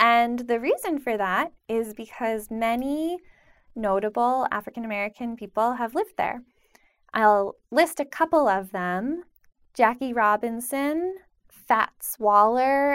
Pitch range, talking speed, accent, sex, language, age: 205-250 Hz, 110 wpm, American, female, English, 10-29